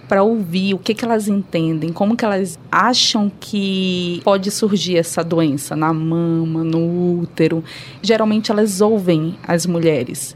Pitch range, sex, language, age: 170-220 Hz, female, Portuguese, 20-39